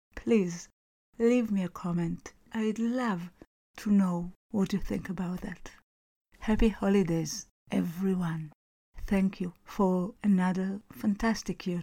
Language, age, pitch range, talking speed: English, 50-69, 185-225 Hz, 115 wpm